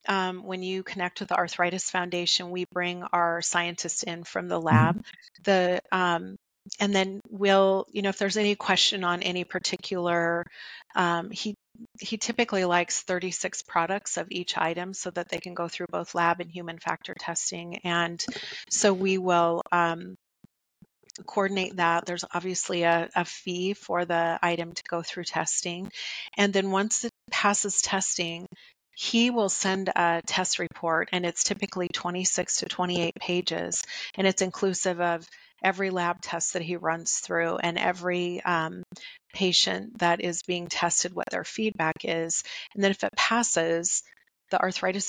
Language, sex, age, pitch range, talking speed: English, female, 30-49, 170-190 Hz, 160 wpm